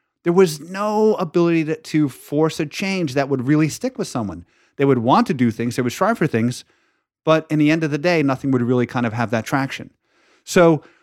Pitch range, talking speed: 130-170 Hz, 225 wpm